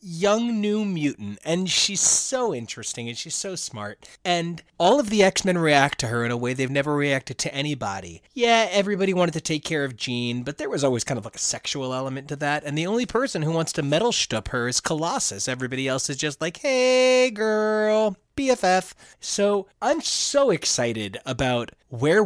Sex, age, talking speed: male, 30-49, 195 wpm